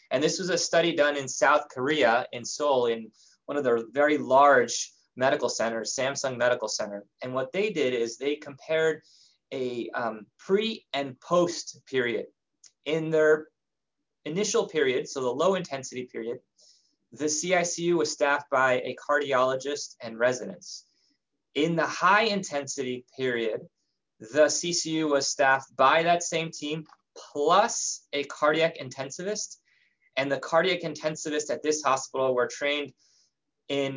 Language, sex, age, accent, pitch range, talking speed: English, male, 20-39, American, 130-165 Hz, 140 wpm